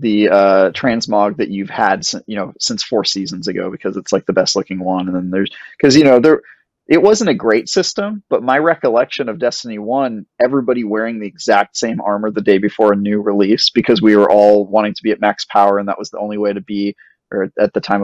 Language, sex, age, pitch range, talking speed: English, male, 20-39, 100-115 Hz, 235 wpm